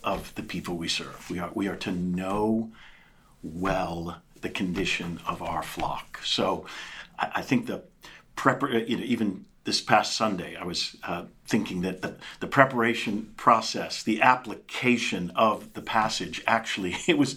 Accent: American